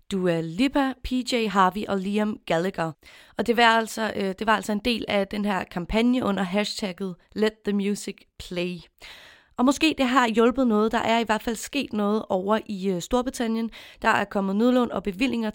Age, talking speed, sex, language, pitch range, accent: 30-49, 195 wpm, female, Danish, 200-240 Hz, native